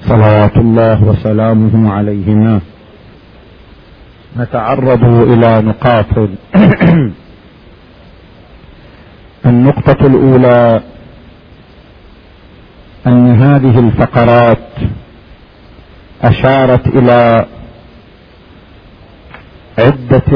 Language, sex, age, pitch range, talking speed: Arabic, male, 50-69, 105-125 Hz, 45 wpm